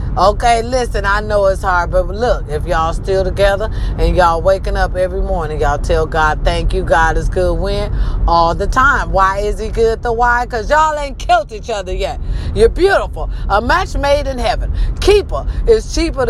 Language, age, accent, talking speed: English, 40-59, American, 195 wpm